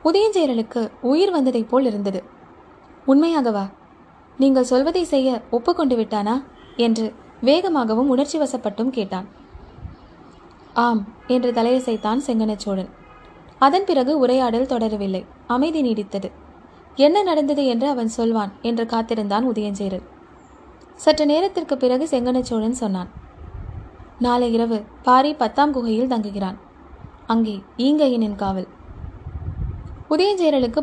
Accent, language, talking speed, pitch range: native, Tamil, 95 wpm, 220-285 Hz